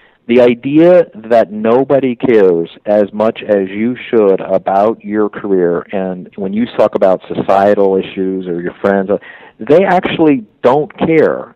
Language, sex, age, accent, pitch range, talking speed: English, male, 50-69, American, 100-135 Hz, 140 wpm